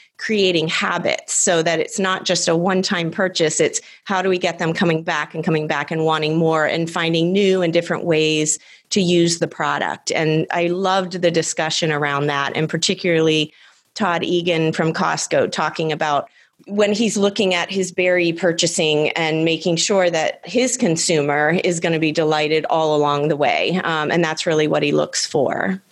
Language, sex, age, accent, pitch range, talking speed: English, female, 30-49, American, 160-185 Hz, 185 wpm